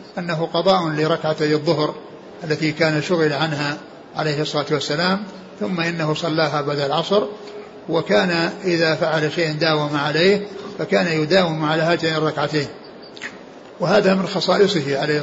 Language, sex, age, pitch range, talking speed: Arabic, male, 60-79, 150-175 Hz, 120 wpm